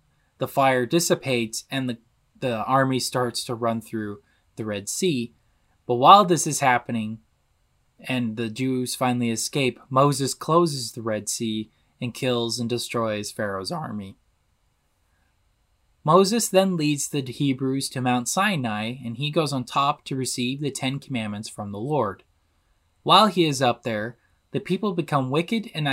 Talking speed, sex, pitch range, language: 155 wpm, male, 115-155 Hz, English